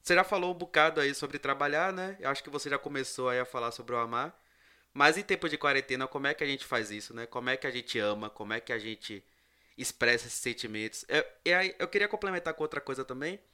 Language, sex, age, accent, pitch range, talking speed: Portuguese, male, 20-39, Brazilian, 125-160 Hz, 250 wpm